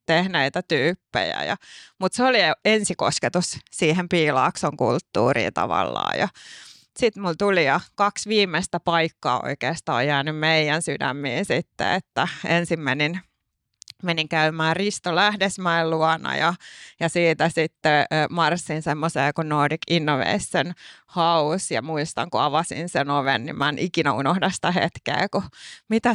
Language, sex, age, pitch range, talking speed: Finnish, female, 30-49, 150-180 Hz, 125 wpm